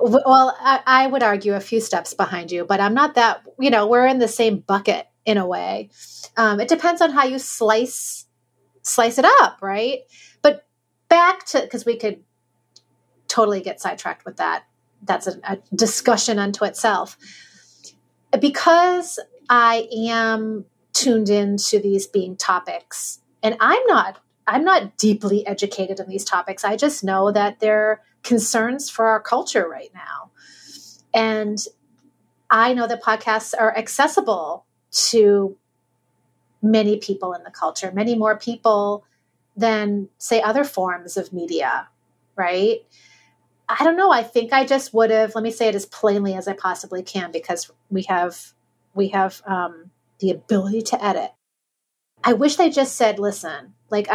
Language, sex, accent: English, female, American